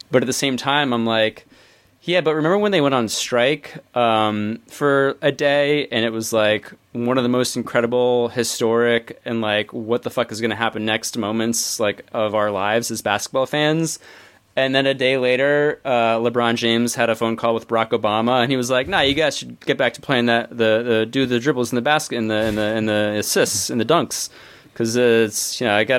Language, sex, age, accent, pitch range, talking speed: English, male, 20-39, American, 115-140 Hz, 230 wpm